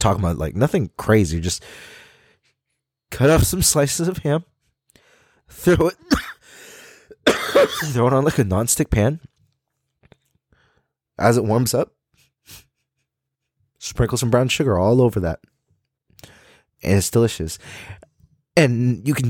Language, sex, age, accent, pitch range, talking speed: English, male, 20-39, American, 90-135 Hz, 120 wpm